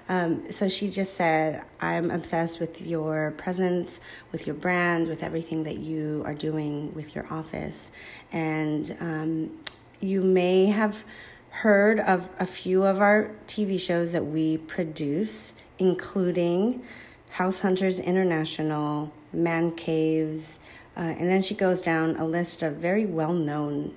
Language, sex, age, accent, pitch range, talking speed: English, female, 30-49, American, 160-190 Hz, 140 wpm